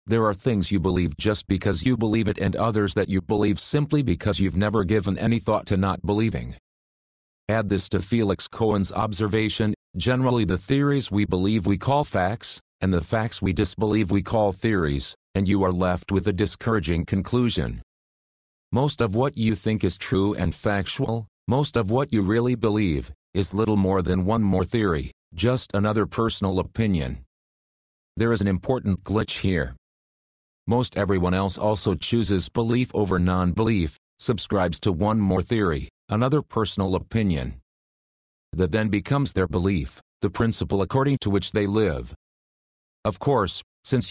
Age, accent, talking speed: 40-59, American, 160 wpm